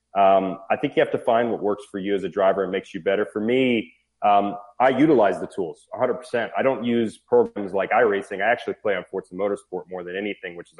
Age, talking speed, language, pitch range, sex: 30-49, 245 wpm, English, 95-115 Hz, male